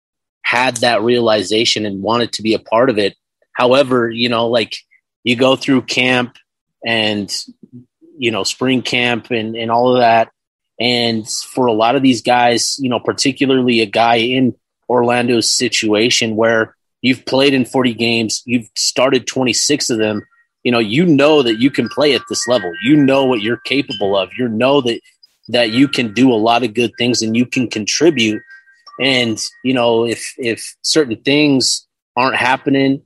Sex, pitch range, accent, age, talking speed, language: male, 115-130 Hz, American, 30-49, 175 wpm, English